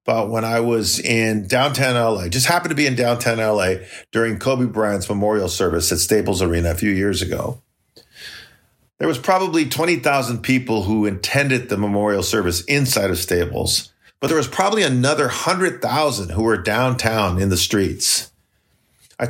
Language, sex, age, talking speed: English, male, 50-69, 160 wpm